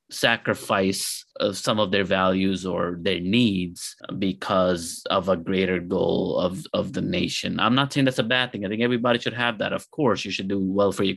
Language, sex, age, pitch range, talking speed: English, male, 30-49, 100-130 Hz, 205 wpm